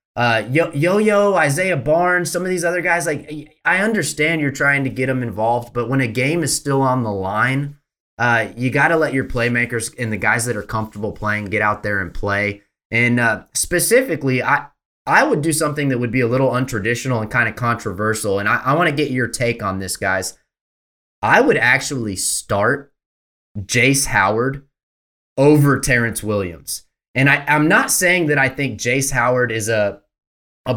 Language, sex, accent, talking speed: English, male, American, 190 wpm